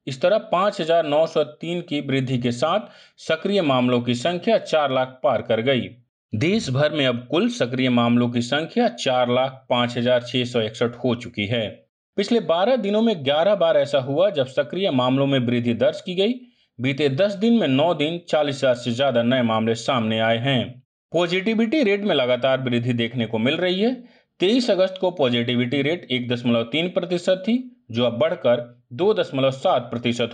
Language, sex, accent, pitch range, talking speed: Hindi, male, native, 125-180 Hz, 160 wpm